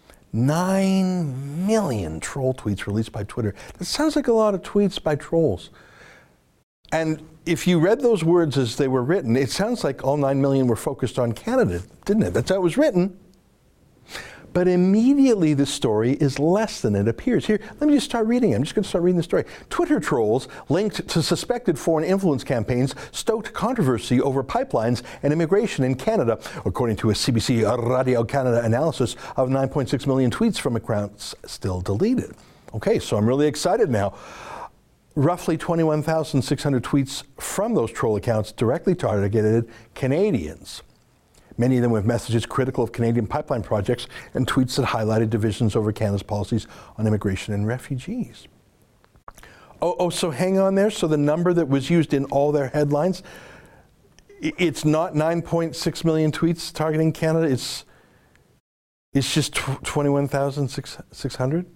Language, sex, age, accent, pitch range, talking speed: English, male, 60-79, American, 120-170 Hz, 155 wpm